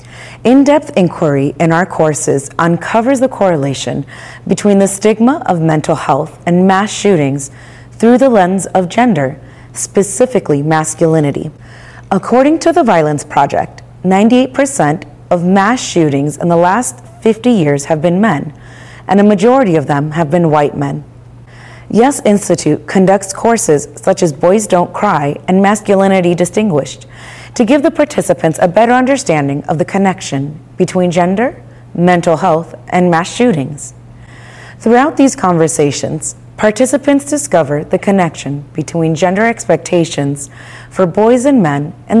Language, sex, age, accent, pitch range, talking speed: English, female, 30-49, American, 145-215 Hz, 135 wpm